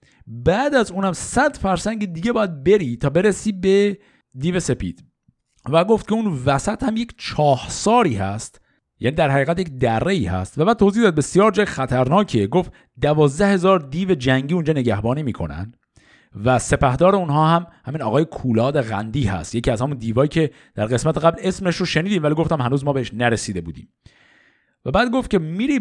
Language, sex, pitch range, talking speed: Persian, male, 130-200 Hz, 175 wpm